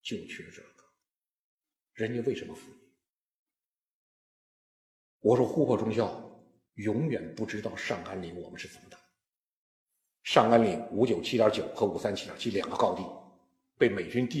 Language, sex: Chinese, male